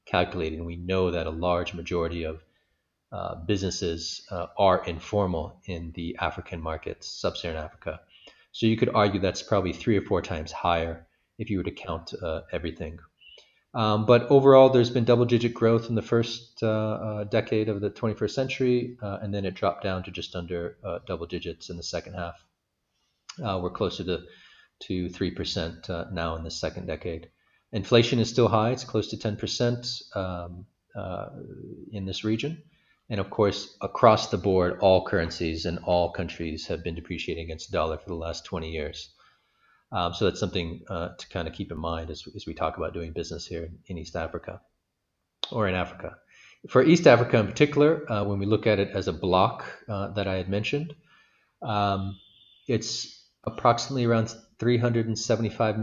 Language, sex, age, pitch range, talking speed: English, male, 40-59, 85-115 Hz, 180 wpm